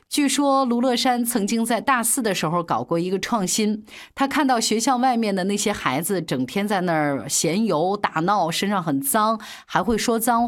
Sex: female